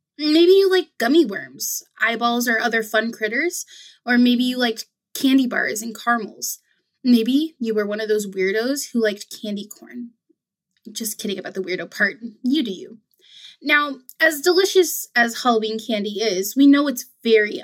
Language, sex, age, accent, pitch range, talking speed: English, female, 20-39, American, 220-275 Hz, 165 wpm